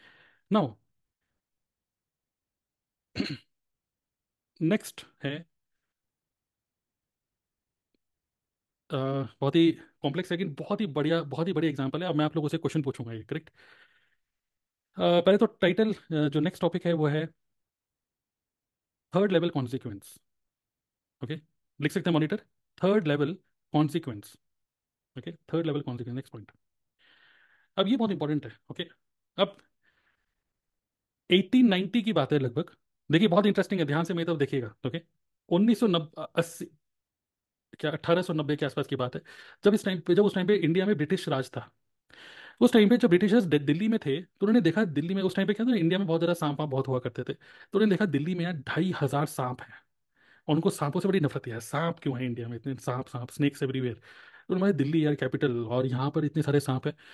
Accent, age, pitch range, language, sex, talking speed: native, 30-49, 135-185 Hz, Hindi, male, 175 wpm